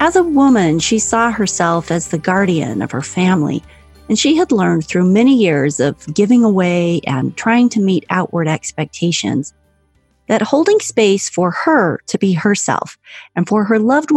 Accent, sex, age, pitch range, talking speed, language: American, female, 40-59, 170-240 Hz, 170 wpm, English